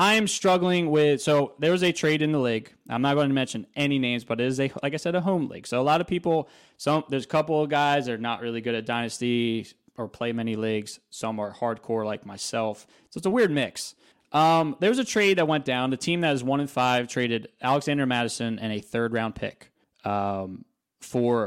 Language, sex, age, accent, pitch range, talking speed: English, male, 20-39, American, 120-150 Hz, 240 wpm